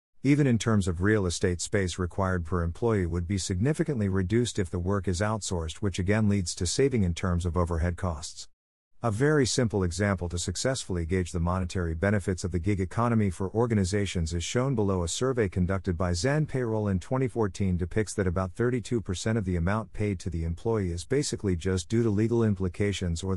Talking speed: 195 wpm